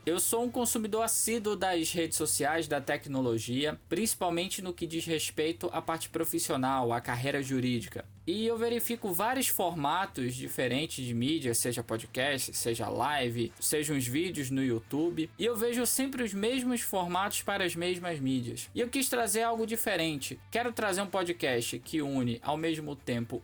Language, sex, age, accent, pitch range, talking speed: Portuguese, male, 20-39, Brazilian, 135-205 Hz, 165 wpm